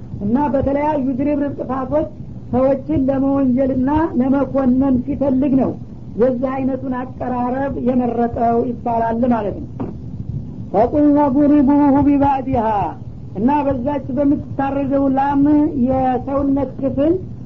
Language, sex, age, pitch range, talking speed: Amharic, female, 60-79, 255-280 Hz, 100 wpm